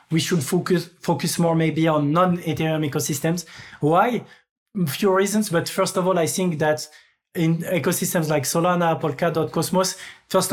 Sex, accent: male, French